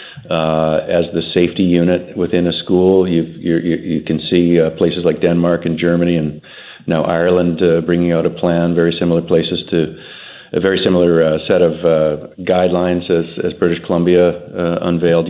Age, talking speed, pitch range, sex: 50-69, 175 wpm, 80-95 Hz, male